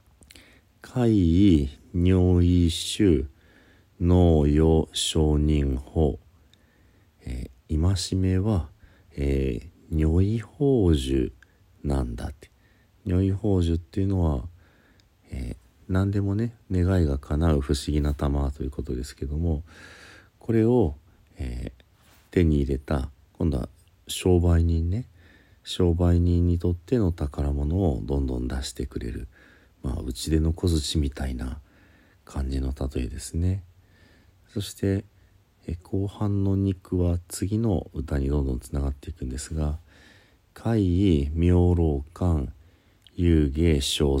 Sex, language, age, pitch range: male, Japanese, 40-59, 75-95 Hz